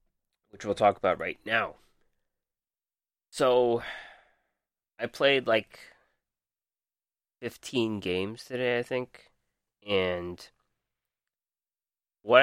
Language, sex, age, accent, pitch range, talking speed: English, male, 20-39, American, 90-110 Hz, 80 wpm